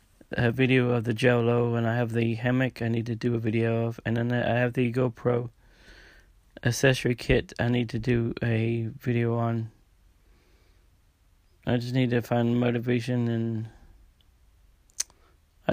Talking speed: 150 wpm